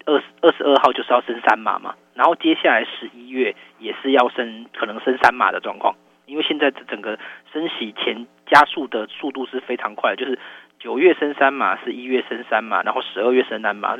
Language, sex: Chinese, male